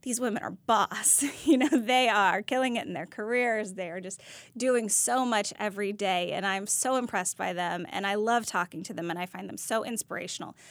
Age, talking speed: 10-29, 215 wpm